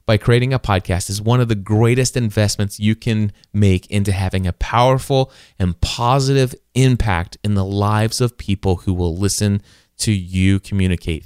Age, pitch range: 30-49, 100-145 Hz